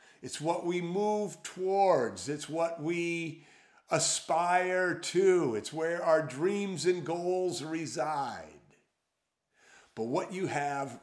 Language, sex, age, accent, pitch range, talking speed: English, male, 50-69, American, 140-185 Hz, 115 wpm